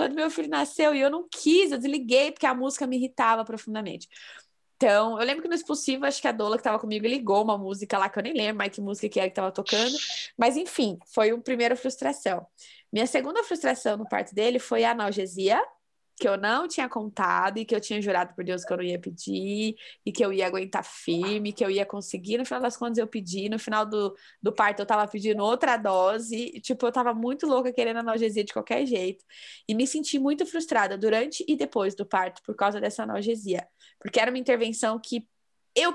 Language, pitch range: Portuguese, 205-265 Hz